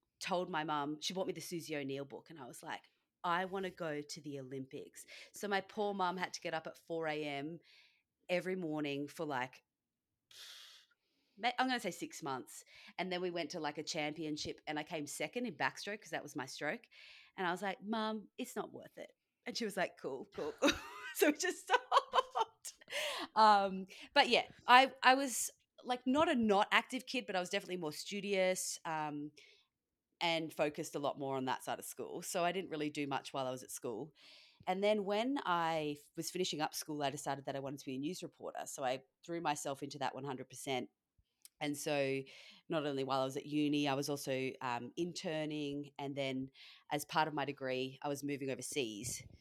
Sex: female